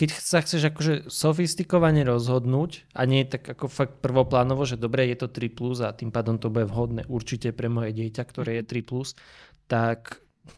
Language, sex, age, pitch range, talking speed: Slovak, male, 20-39, 120-140 Hz, 175 wpm